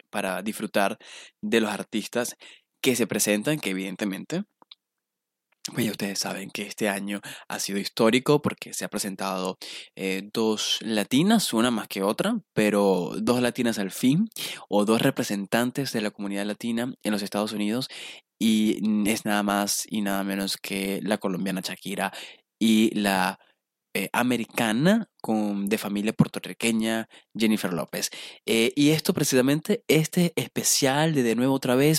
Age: 20-39